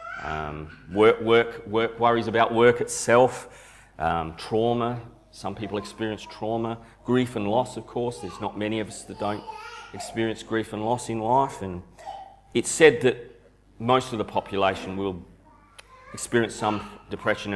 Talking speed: 150 wpm